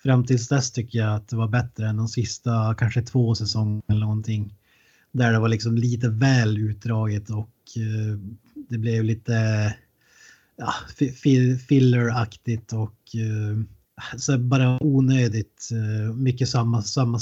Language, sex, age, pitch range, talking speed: Swedish, male, 30-49, 110-125 Hz, 140 wpm